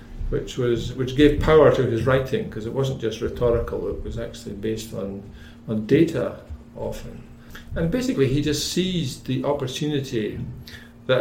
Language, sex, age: English, male, 50-69